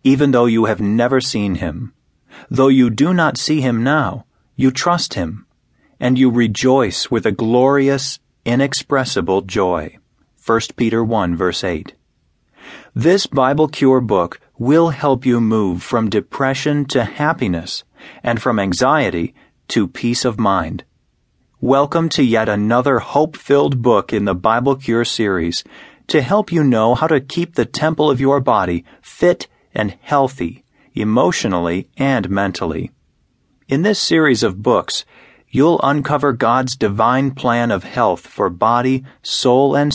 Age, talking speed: 40-59, 140 wpm